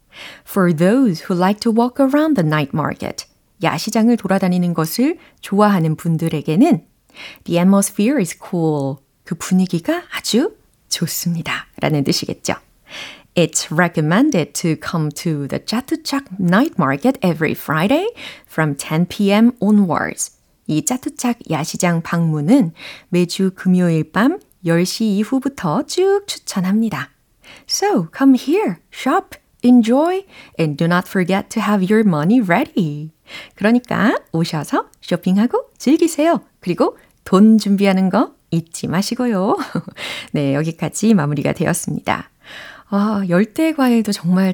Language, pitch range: Korean, 165-240 Hz